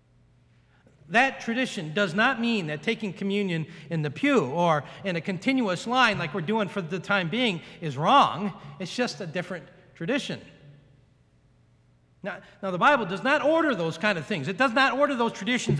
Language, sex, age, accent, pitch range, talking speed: English, male, 40-59, American, 145-215 Hz, 180 wpm